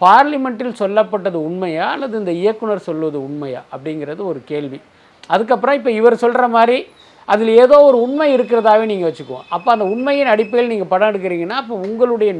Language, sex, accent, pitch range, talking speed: Tamil, male, native, 165-235 Hz, 155 wpm